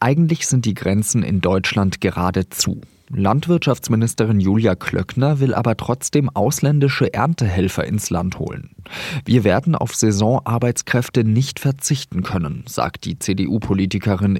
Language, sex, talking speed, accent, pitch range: German, male, 115 wpm, German, 95-130 Hz